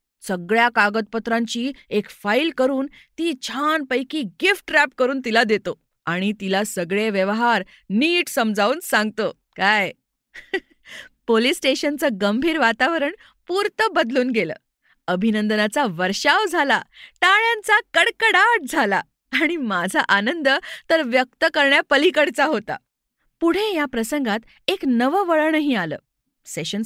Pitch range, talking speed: 220-330 Hz, 90 wpm